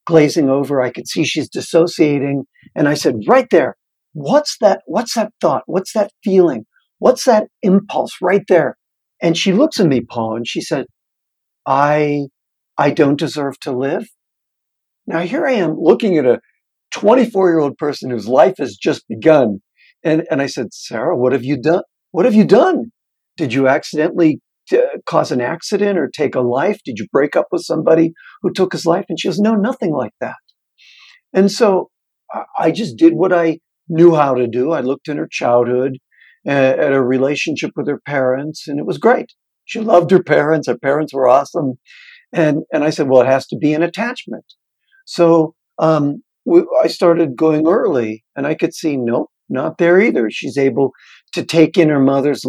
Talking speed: 185 wpm